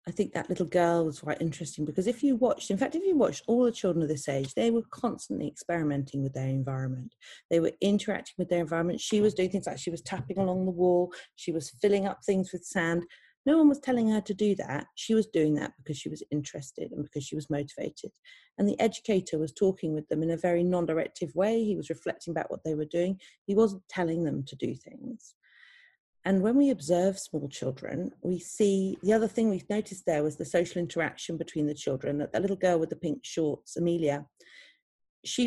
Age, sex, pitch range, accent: 40-59, female, 155-205 Hz, British